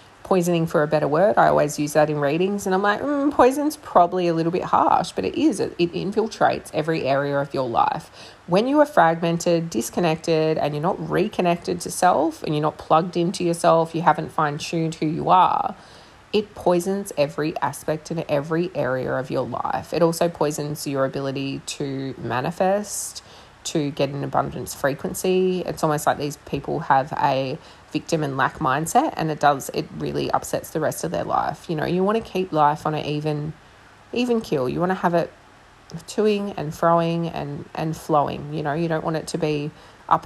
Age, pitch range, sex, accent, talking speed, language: 20-39, 150-180 Hz, female, Australian, 195 wpm, English